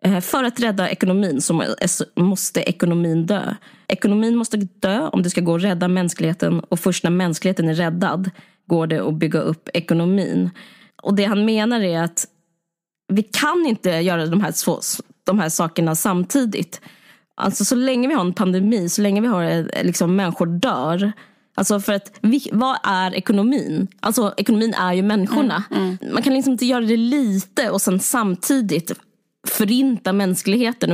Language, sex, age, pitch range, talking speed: Swedish, female, 20-39, 175-220 Hz, 165 wpm